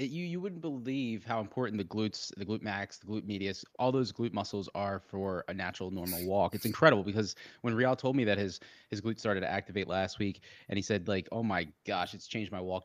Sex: male